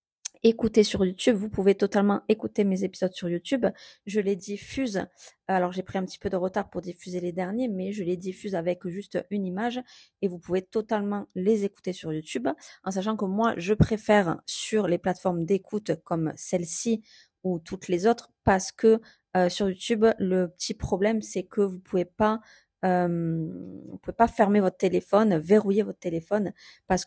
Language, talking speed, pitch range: French, 180 wpm, 180-215 Hz